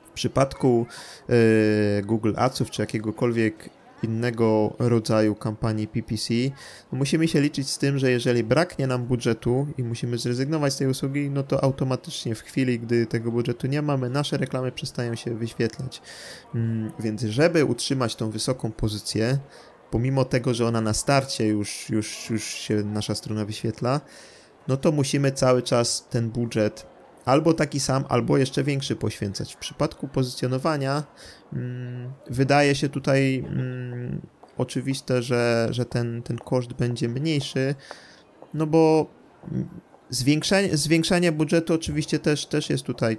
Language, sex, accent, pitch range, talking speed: Polish, male, native, 115-145 Hz, 135 wpm